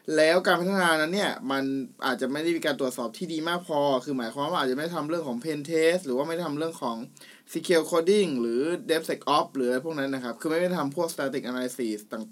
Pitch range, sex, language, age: 135-175 Hz, male, Thai, 20-39